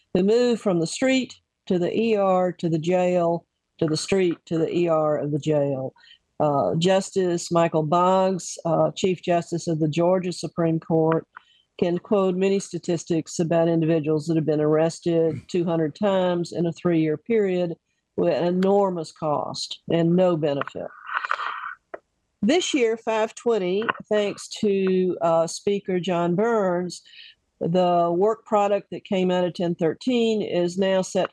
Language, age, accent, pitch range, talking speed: English, 50-69, American, 165-200 Hz, 145 wpm